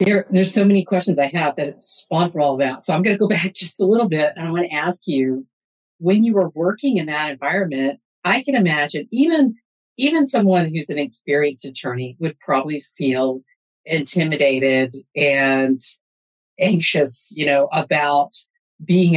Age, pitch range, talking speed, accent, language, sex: 50-69, 140-190 Hz, 175 wpm, American, English, female